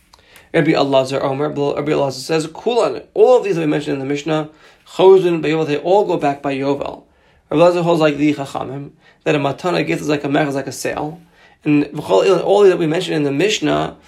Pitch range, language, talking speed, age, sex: 150-175 Hz, English, 210 wpm, 30-49, male